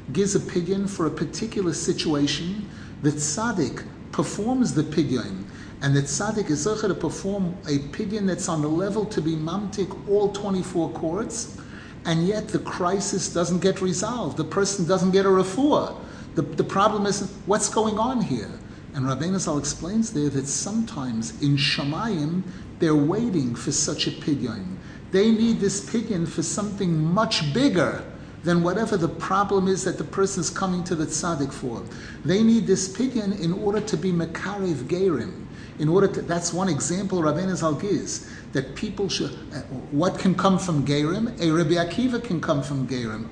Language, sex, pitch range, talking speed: English, male, 150-200 Hz, 170 wpm